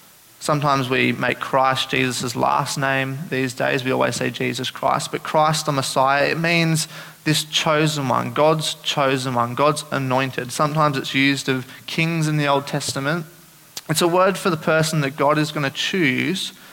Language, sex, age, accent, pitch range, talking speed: English, male, 20-39, Australian, 135-160 Hz, 170 wpm